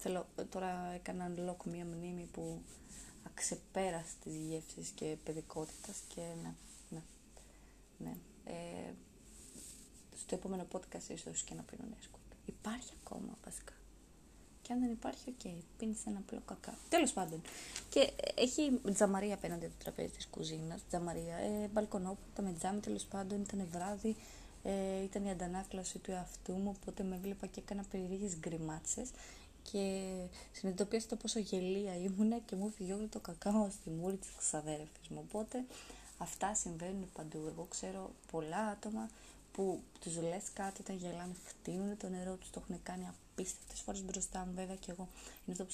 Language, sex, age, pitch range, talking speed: Greek, female, 20-39, 175-205 Hz, 155 wpm